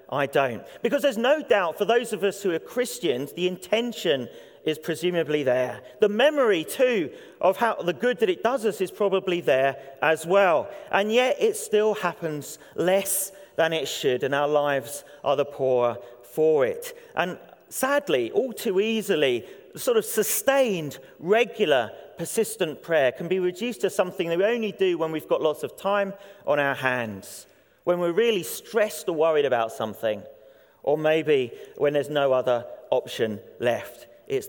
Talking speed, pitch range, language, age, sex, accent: 170 wpm, 155-245 Hz, English, 40-59, male, British